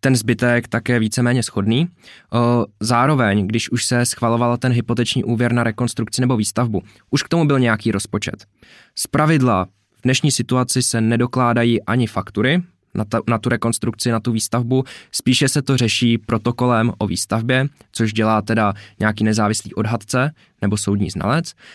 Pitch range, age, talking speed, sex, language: 105-125 Hz, 20-39, 145 wpm, male, Czech